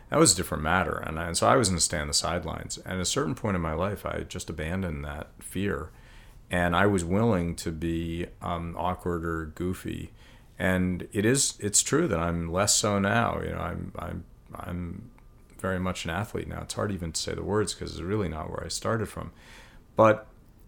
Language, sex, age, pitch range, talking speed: English, male, 40-59, 85-105 Hz, 215 wpm